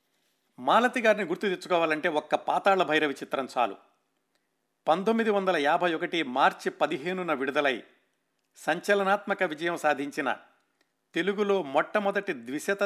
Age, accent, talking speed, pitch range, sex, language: 50-69, native, 100 wpm, 145-195 Hz, male, Telugu